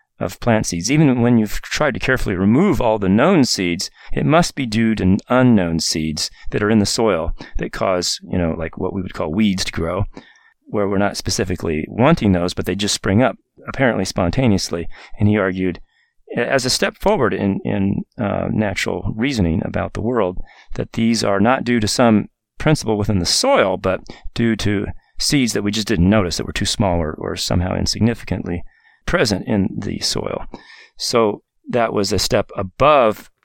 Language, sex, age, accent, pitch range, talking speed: English, male, 40-59, American, 90-115 Hz, 185 wpm